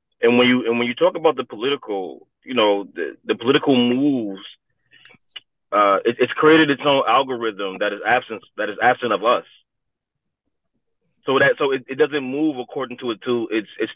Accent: American